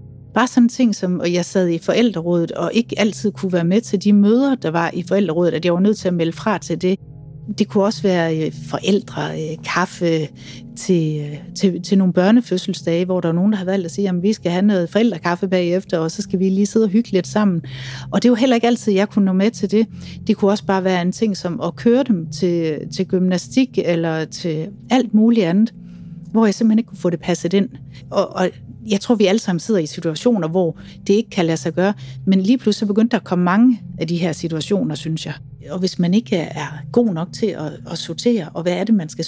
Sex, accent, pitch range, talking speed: female, native, 165-205 Hz, 240 wpm